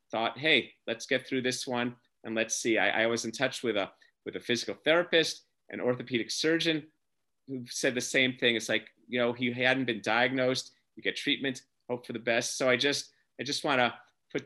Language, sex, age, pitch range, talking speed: English, male, 30-49, 115-145 Hz, 215 wpm